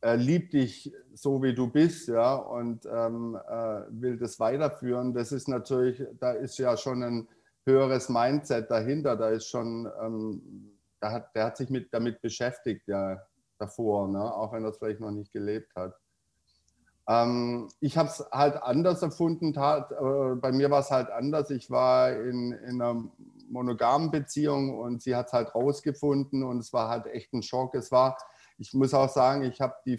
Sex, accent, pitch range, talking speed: male, German, 115-135 Hz, 180 wpm